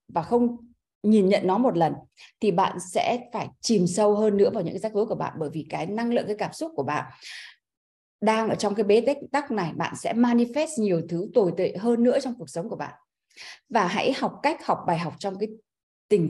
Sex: female